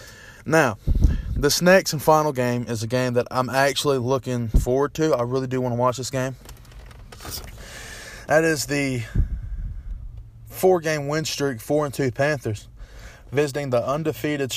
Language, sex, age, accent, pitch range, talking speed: English, male, 20-39, American, 120-155 Hz, 145 wpm